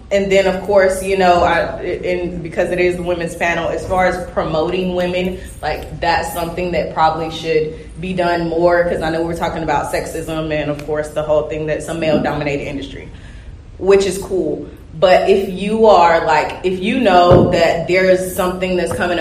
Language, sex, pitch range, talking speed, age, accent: English, female, 175-230 Hz, 195 wpm, 20-39, American